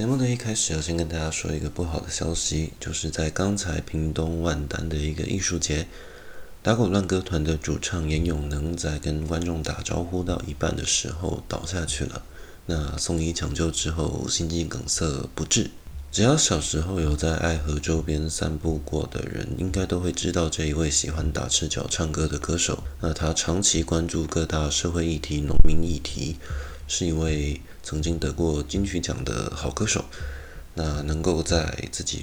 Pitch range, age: 75-90 Hz, 20-39